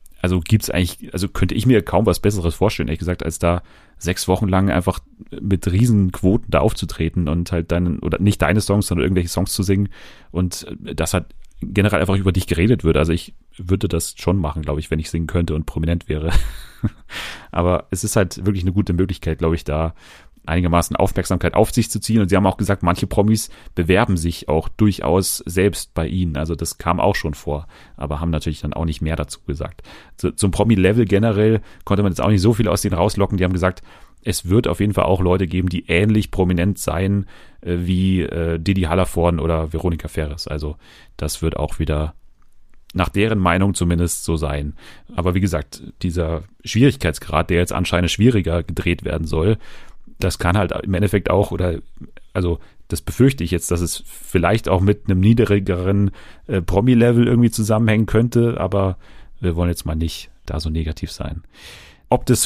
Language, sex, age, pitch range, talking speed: German, male, 30-49, 85-100 Hz, 195 wpm